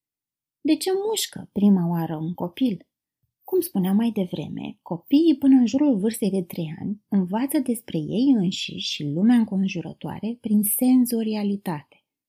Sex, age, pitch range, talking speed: female, 30-49, 185-270 Hz, 135 wpm